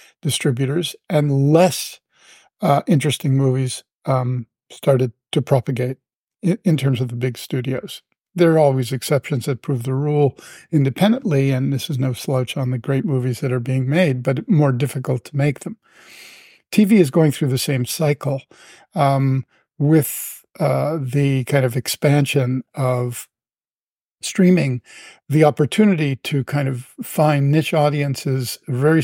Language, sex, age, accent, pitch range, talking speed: English, male, 50-69, American, 130-155 Hz, 145 wpm